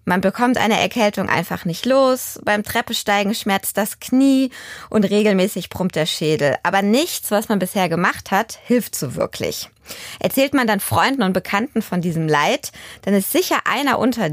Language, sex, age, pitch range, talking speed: German, female, 20-39, 190-250 Hz, 170 wpm